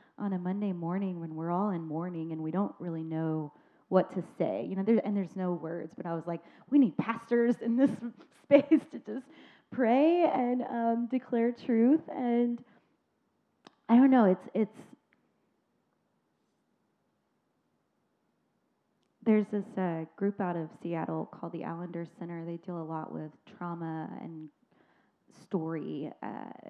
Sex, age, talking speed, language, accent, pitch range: female, 20-39, 150 wpm, English, American, 175-230 Hz